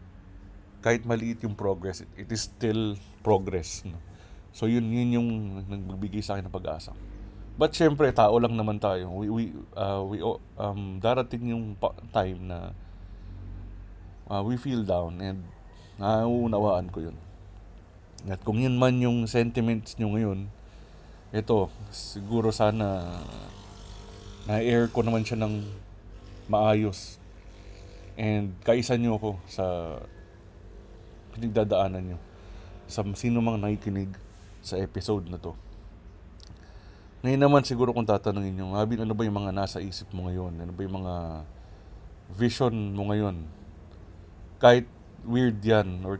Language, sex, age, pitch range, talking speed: Filipino, male, 20-39, 90-110 Hz, 125 wpm